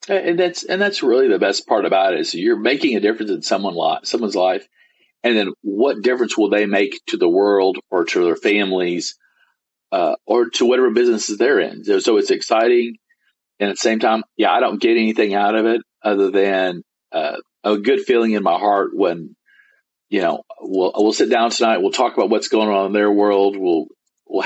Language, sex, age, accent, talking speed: English, male, 50-69, American, 205 wpm